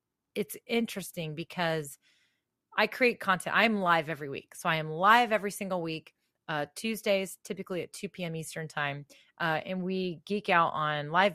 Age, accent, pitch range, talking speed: 30-49, American, 160-210 Hz, 170 wpm